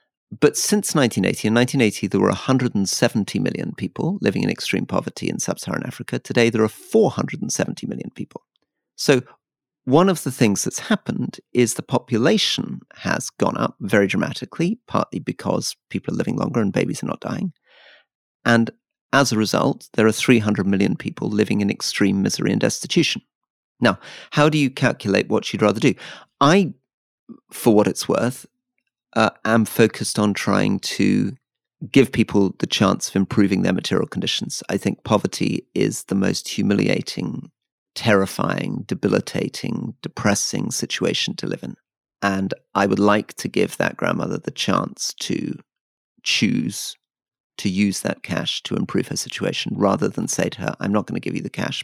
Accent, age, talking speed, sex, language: British, 40-59, 160 wpm, male, English